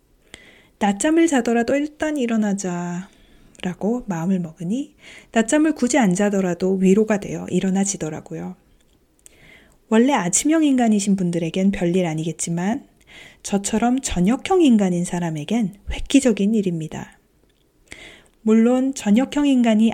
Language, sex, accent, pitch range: Korean, female, native, 185-260 Hz